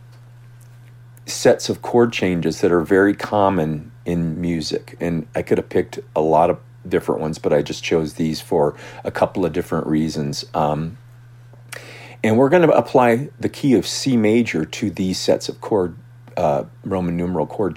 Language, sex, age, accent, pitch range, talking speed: English, male, 40-59, American, 90-120 Hz, 170 wpm